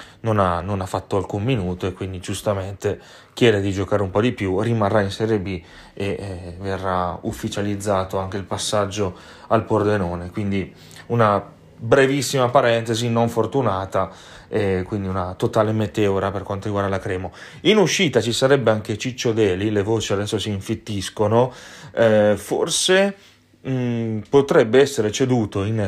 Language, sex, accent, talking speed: Italian, male, native, 150 wpm